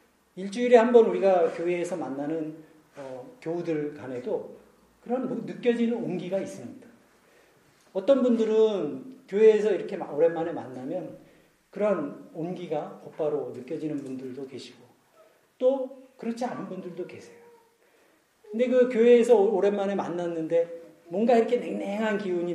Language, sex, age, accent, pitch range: Korean, male, 40-59, native, 170-240 Hz